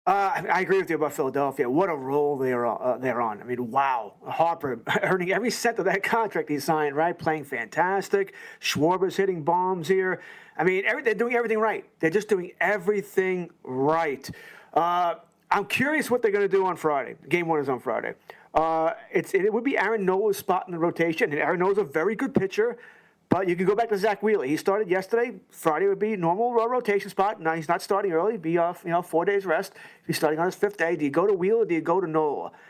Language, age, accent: English, 40-59, American